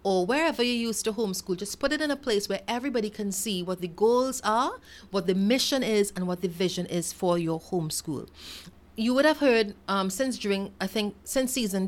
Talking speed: 215 wpm